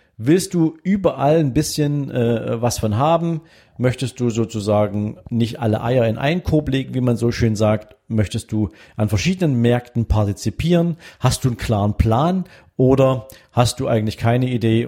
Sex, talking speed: male, 165 wpm